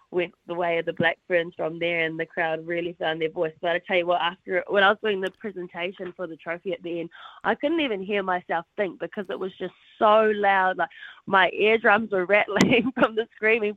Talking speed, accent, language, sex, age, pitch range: 235 wpm, Australian, English, female, 20-39, 170-210 Hz